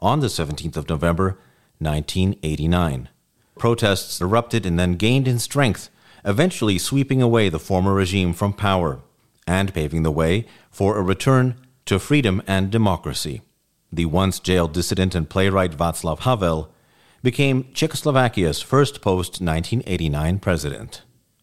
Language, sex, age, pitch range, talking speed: Czech, male, 50-69, 85-115 Hz, 125 wpm